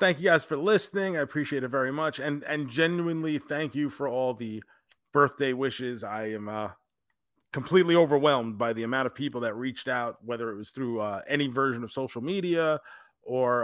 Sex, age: male, 30-49